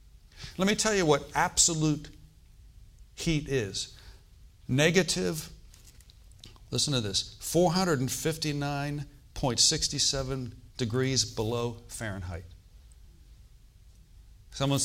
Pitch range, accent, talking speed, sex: 105-145 Hz, American, 70 wpm, male